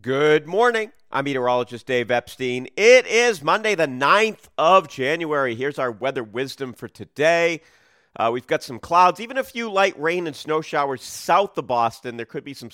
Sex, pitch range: male, 110-160 Hz